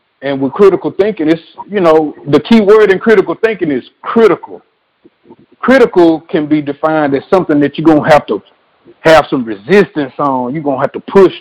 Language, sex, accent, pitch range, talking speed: English, male, American, 145-195 Hz, 195 wpm